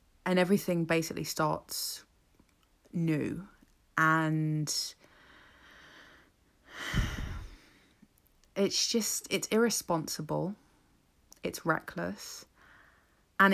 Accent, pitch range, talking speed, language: British, 160-230 Hz, 60 wpm, English